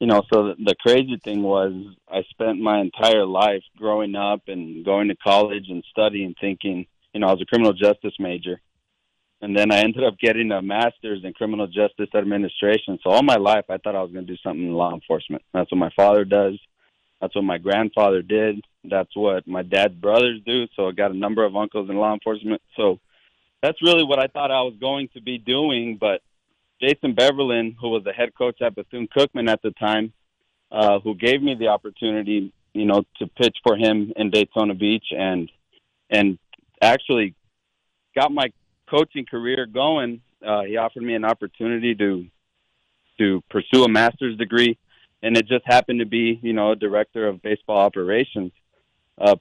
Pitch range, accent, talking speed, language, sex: 100-115 Hz, American, 190 wpm, English, male